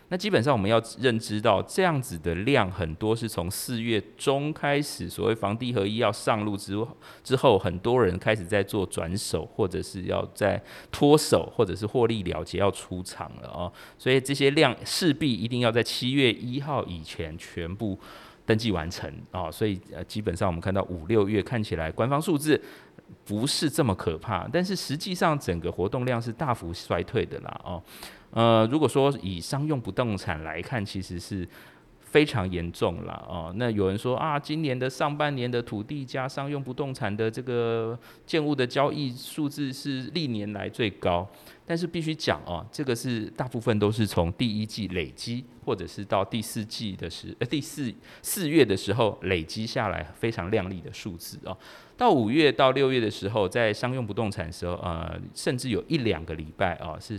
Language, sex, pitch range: Chinese, male, 95-130 Hz